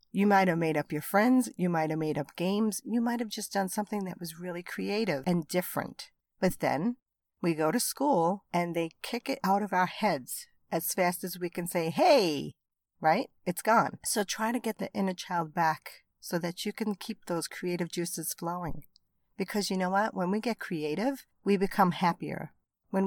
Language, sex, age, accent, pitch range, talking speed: English, female, 50-69, American, 170-205 Hz, 205 wpm